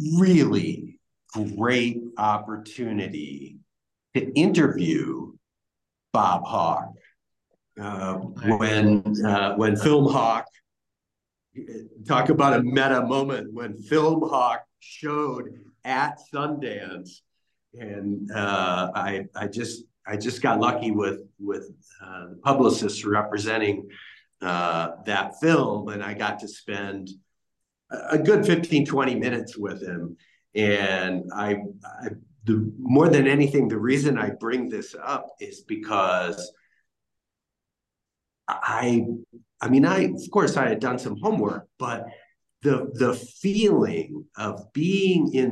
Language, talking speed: English, 115 wpm